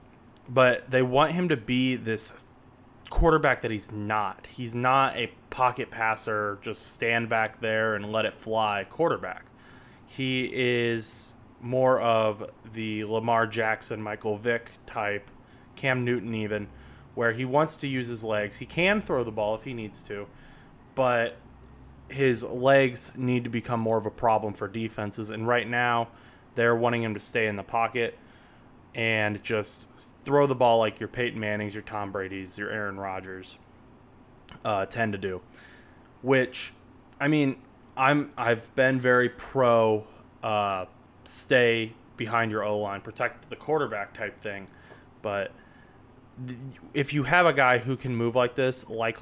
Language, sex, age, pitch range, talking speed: English, male, 20-39, 110-125 Hz, 155 wpm